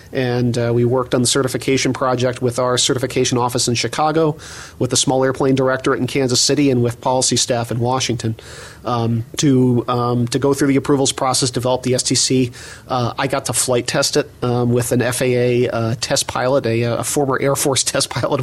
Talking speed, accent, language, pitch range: 200 wpm, American, English, 120-140 Hz